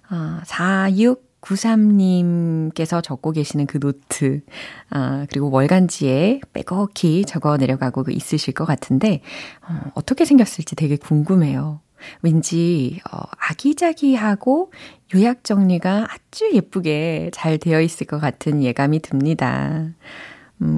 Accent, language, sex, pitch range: native, Korean, female, 150-215 Hz